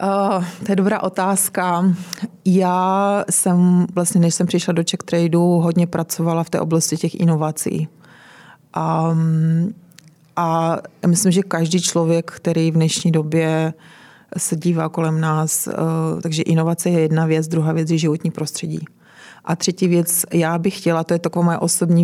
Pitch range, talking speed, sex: 160-175 Hz, 155 wpm, female